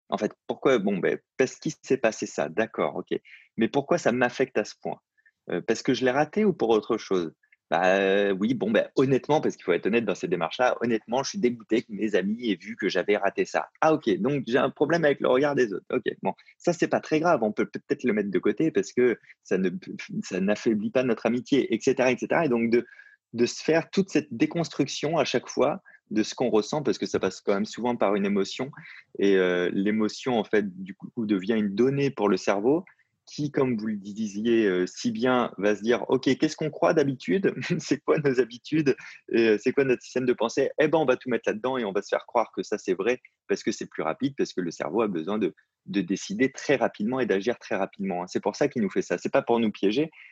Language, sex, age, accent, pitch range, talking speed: French, male, 20-39, French, 105-140 Hz, 250 wpm